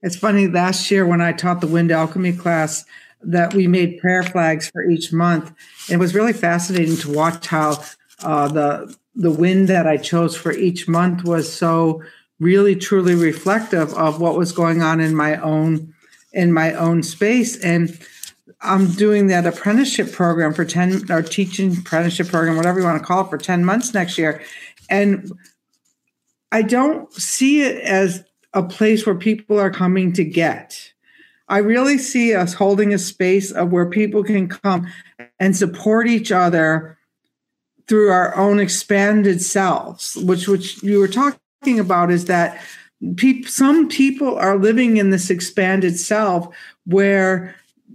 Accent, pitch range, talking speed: American, 170-205 Hz, 160 wpm